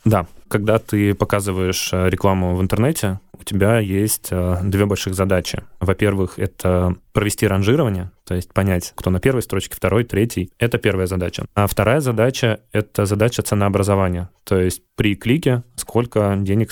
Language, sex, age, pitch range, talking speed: Russian, male, 20-39, 95-115 Hz, 150 wpm